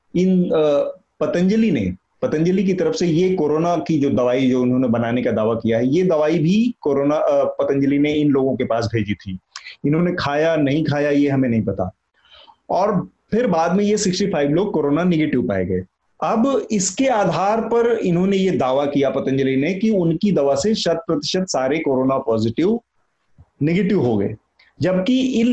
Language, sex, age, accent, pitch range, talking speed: Hindi, male, 30-49, native, 140-195 Hz, 175 wpm